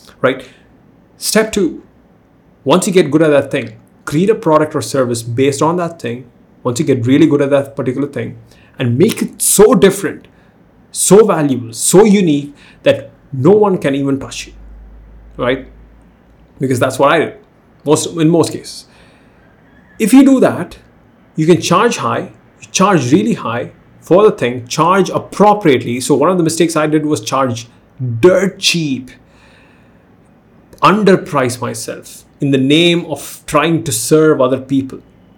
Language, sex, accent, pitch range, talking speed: English, male, Indian, 130-180 Hz, 155 wpm